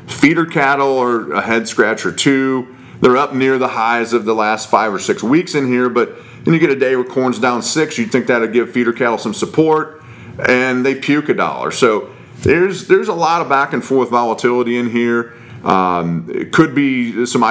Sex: male